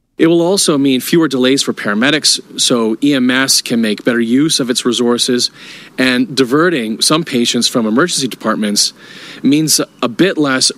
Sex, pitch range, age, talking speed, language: male, 100-140 Hz, 40-59, 155 wpm, English